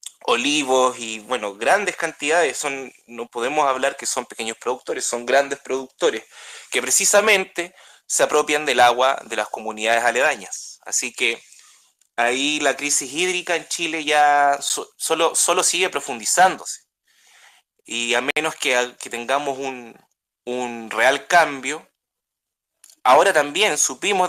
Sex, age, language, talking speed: male, 20-39, Spanish, 130 wpm